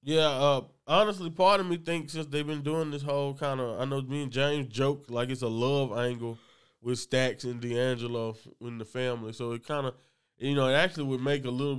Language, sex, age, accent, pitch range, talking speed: English, male, 20-39, American, 120-140 Hz, 240 wpm